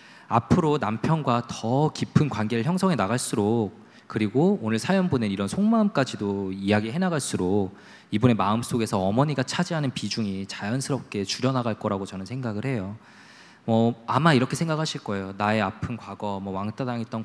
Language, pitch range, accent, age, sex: Korean, 105-135 Hz, native, 20-39, male